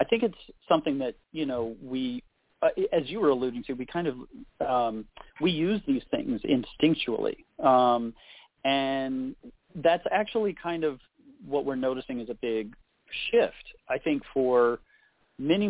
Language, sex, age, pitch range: English, male, 40-59, 115-165 Hz